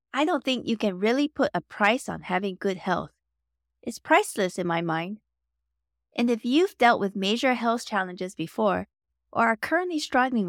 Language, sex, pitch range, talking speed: English, female, 185-265 Hz, 175 wpm